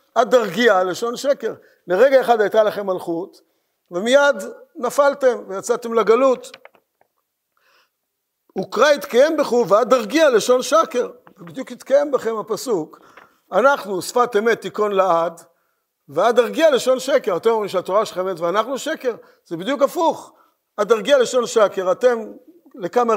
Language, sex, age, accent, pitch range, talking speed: Hebrew, male, 50-69, native, 190-275 Hz, 115 wpm